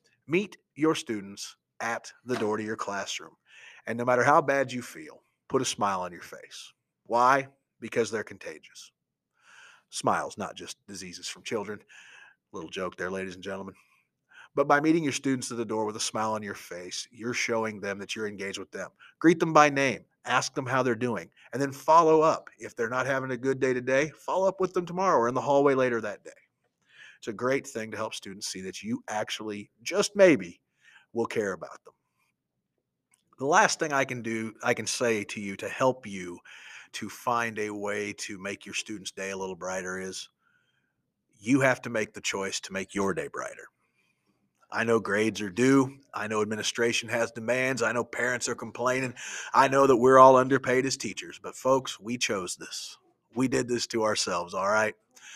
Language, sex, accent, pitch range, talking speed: English, male, American, 105-135 Hz, 200 wpm